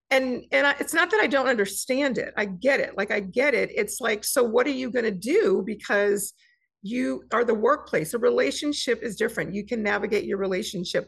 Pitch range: 190-255 Hz